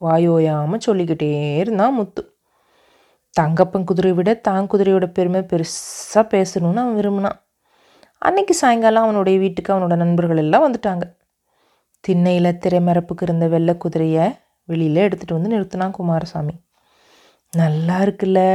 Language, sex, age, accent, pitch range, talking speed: Tamil, female, 30-49, native, 165-195 Hz, 110 wpm